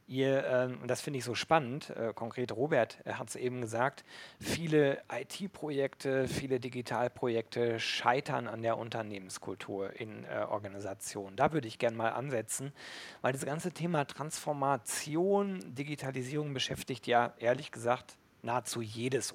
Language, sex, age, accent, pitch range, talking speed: German, male, 40-59, German, 125-150 Hz, 130 wpm